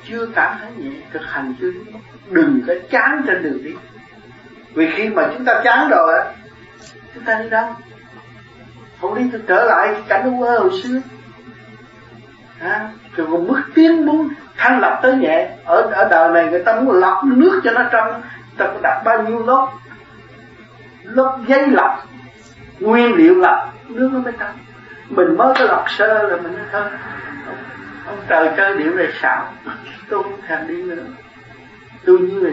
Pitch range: 230-335 Hz